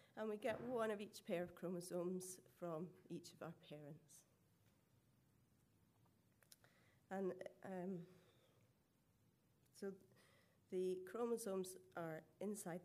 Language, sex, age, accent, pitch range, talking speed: English, female, 40-59, British, 165-200 Hz, 100 wpm